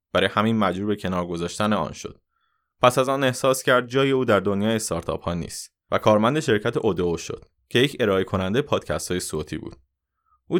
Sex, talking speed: male, 185 wpm